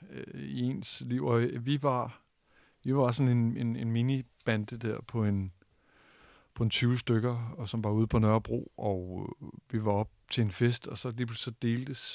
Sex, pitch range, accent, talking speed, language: male, 110-125 Hz, native, 185 wpm, Danish